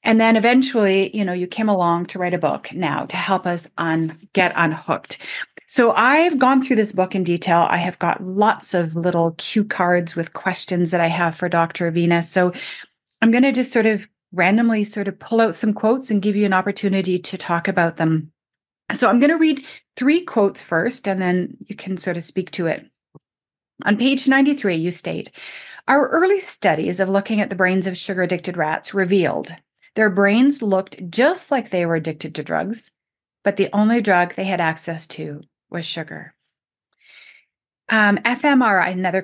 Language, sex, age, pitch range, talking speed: English, female, 30-49, 175-220 Hz, 190 wpm